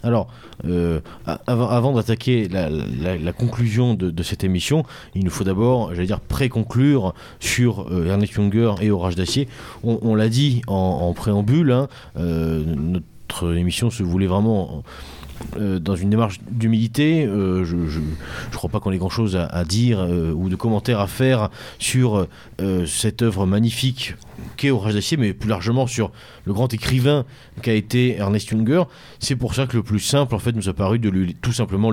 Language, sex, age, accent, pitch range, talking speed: French, male, 30-49, French, 95-125 Hz, 180 wpm